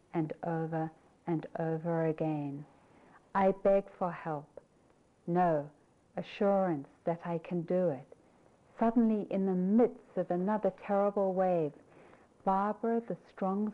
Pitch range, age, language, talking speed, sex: 165-205 Hz, 60-79, English, 120 wpm, female